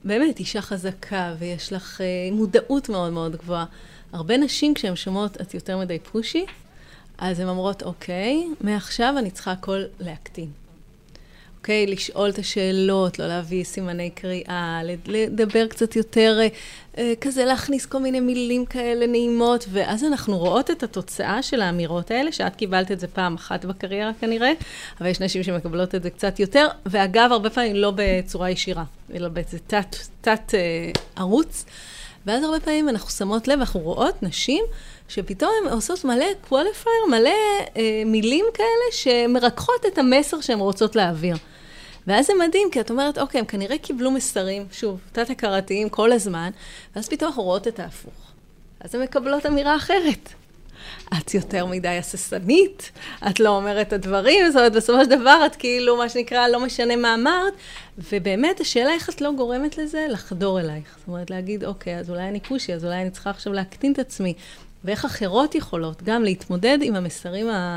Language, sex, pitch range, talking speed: Hebrew, female, 185-255 Hz, 165 wpm